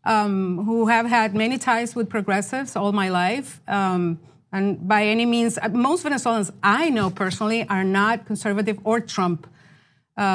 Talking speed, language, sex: 155 wpm, English, female